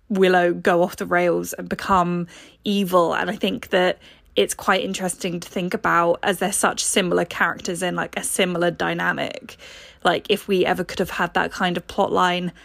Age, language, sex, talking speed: 20-39, English, female, 190 wpm